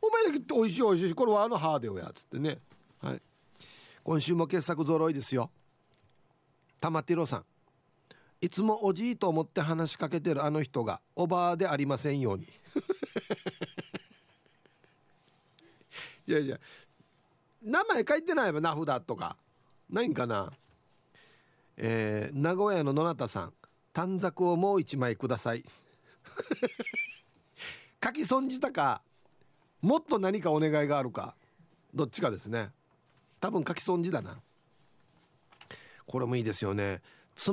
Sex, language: male, Japanese